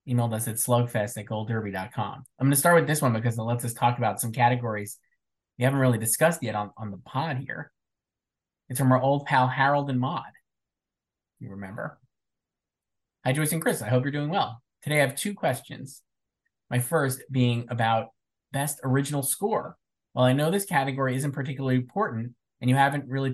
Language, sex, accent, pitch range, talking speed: English, male, American, 120-140 Hz, 190 wpm